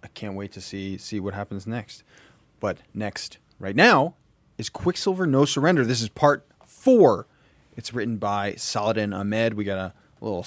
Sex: male